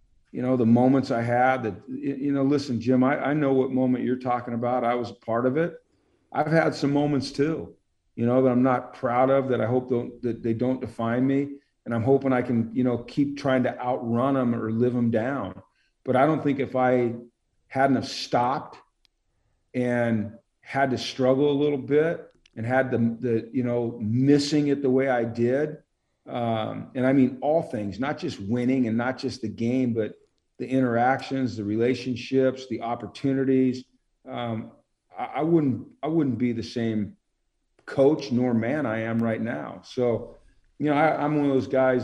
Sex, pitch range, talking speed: male, 115-135 Hz, 195 wpm